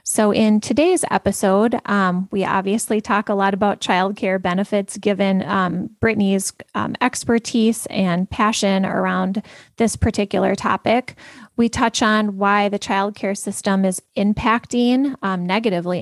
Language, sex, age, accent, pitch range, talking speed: English, female, 20-39, American, 190-225 Hz, 135 wpm